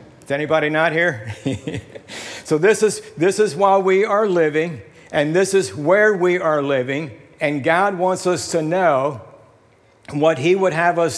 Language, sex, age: English, male, 60-79